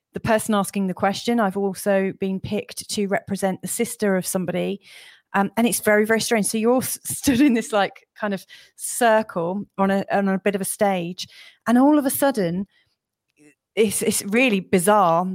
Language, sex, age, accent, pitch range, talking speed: English, female, 30-49, British, 190-225 Hz, 190 wpm